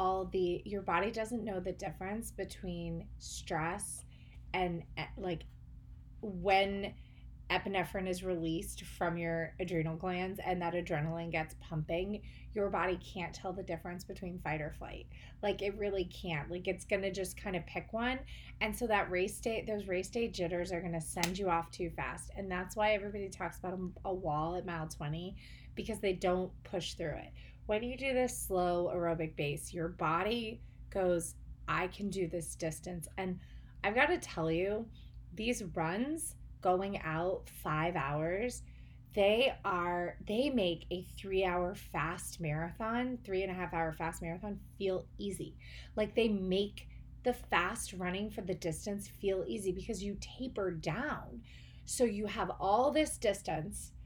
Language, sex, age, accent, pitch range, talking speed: English, female, 30-49, American, 170-205 Hz, 165 wpm